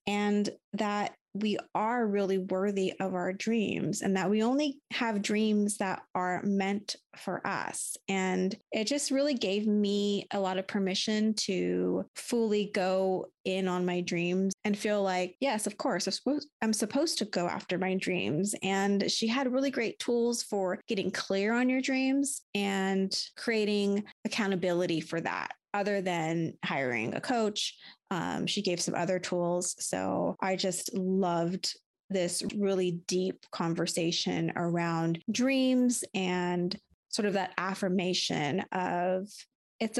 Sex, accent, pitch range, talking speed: female, American, 185-215 Hz, 145 wpm